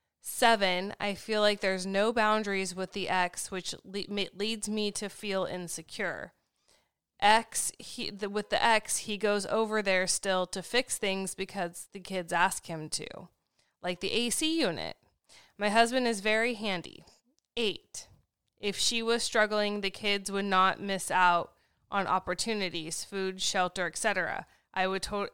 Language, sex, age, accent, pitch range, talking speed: English, female, 20-39, American, 185-215 Hz, 150 wpm